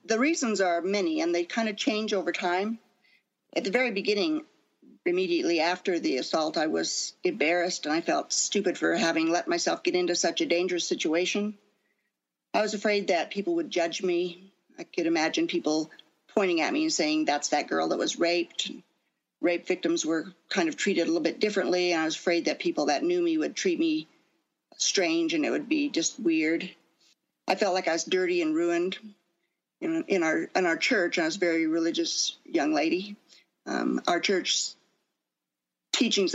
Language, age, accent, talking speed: English, 50-69, American, 180 wpm